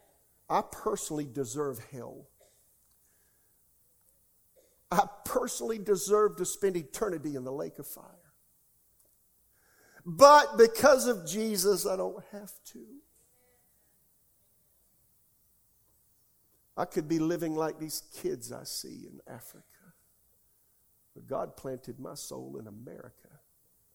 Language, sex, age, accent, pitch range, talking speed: English, male, 50-69, American, 120-155 Hz, 105 wpm